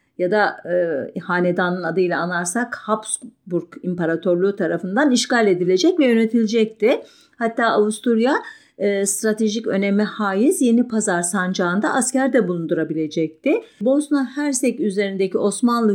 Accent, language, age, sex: Turkish, German, 50-69, female